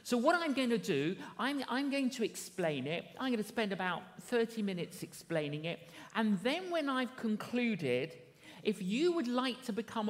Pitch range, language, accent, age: 190-255 Hz, English, British, 50-69